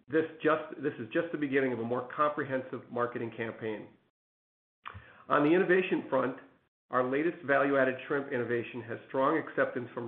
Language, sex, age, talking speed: English, male, 50-69, 155 wpm